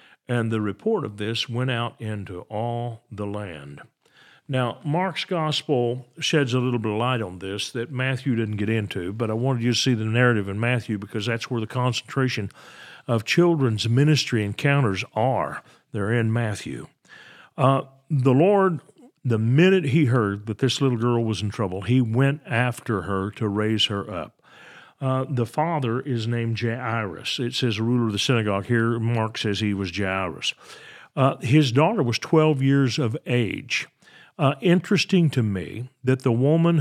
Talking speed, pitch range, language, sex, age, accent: 175 wpm, 110-140 Hz, English, male, 50-69, American